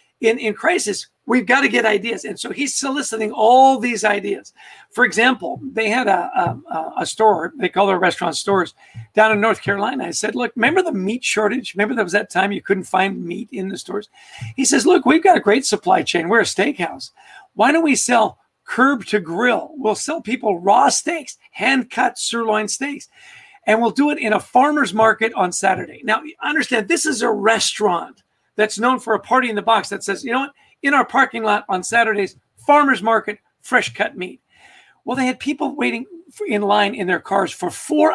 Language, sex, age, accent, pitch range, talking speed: English, male, 50-69, American, 210-285 Hz, 205 wpm